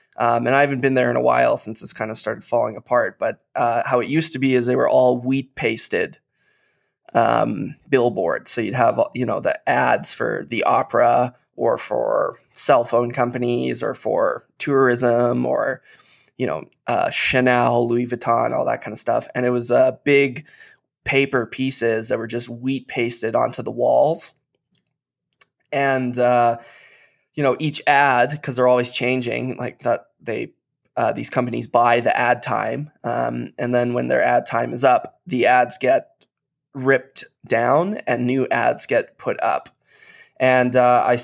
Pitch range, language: 120-140 Hz, English